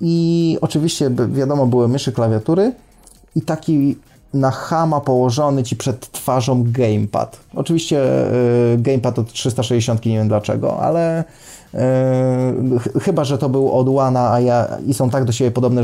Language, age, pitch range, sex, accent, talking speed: Polish, 20-39, 115-135 Hz, male, native, 150 wpm